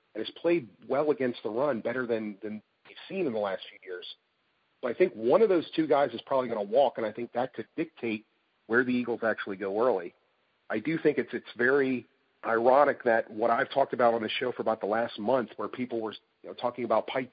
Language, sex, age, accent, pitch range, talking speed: English, male, 40-59, American, 115-140 Hz, 240 wpm